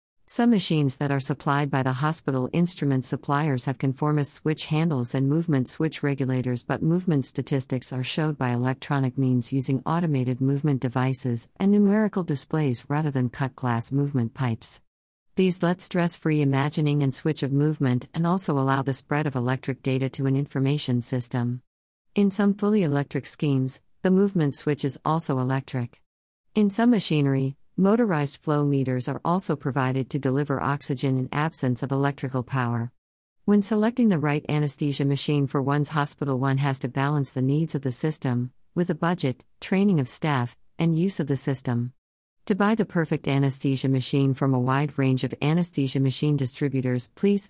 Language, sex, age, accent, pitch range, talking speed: English, female, 50-69, American, 130-155 Hz, 165 wpm